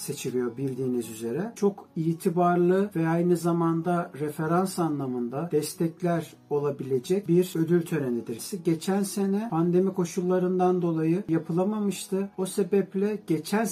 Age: 50-69